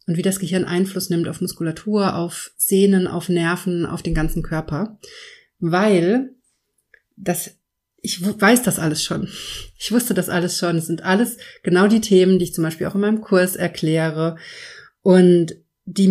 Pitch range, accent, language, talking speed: 175-205 Hz, German, German, 170 wpm